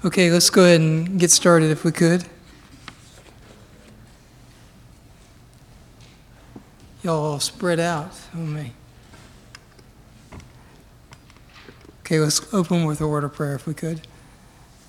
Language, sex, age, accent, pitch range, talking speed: English, male, 60-79, American, 150-180 Hz, 100 wpm